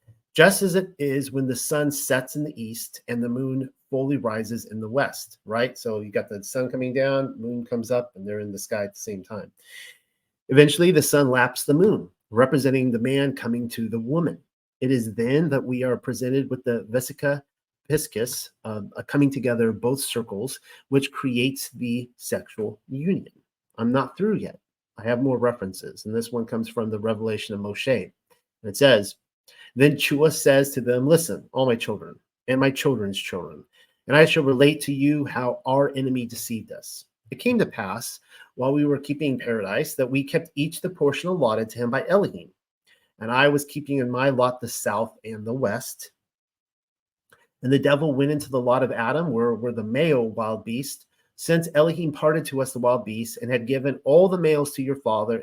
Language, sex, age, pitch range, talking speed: English, male, 40-59, 120-145 Hz, 200 wpm